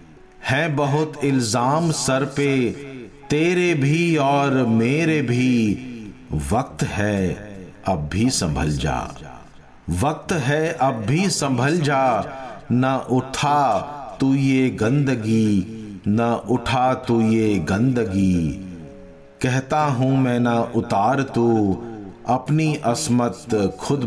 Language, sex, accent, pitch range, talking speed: Hindi, male, native, 110-140 Hz, 100 wpm